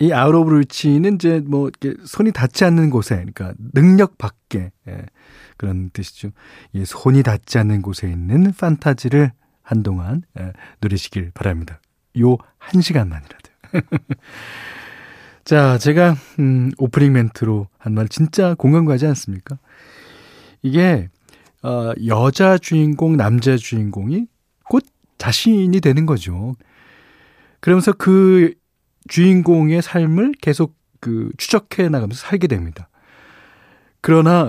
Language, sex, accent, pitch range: Korean, male, native, 115-175 Hz